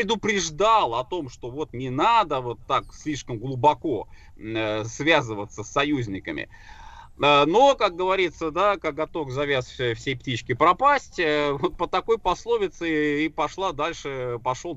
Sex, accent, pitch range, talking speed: male, native, 130-185 Hz, 125 wpm